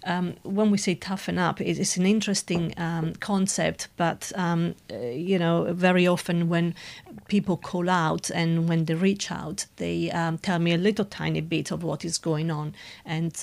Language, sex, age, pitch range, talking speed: English, female, 40-59, 160-185 Hz, 185 wpm